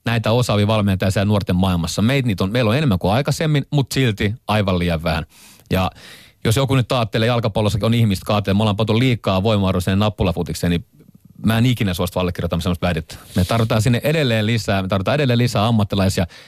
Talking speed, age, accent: 185 wpm, 40-59, native